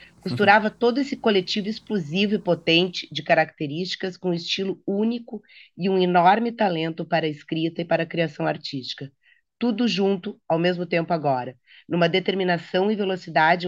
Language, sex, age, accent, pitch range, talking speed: Portuguese, female, 30-49, Brazilian, 160-195 Hz, 155 wpm